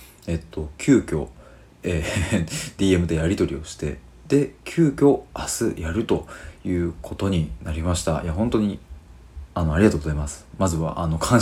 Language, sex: Japanese, male